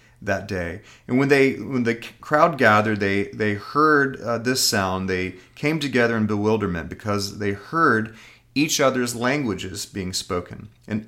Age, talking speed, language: 30-49, 155 wpm, English